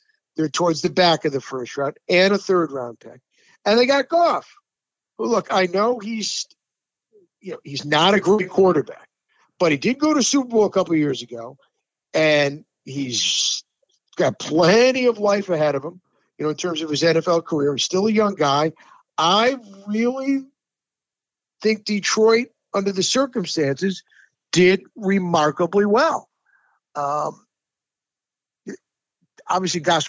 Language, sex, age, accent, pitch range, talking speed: English, male, 50-69, American, 160-220 Hz, 150 wpm